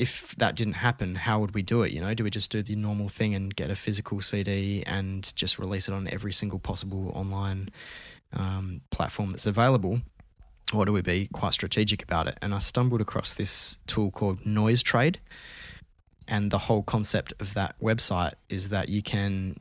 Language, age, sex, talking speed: English, 20-39, male, 195 wpm